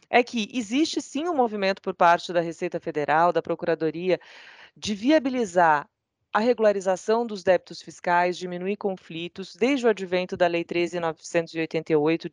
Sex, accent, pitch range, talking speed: female, Brazilian, 170-210 Hz, 135 wpm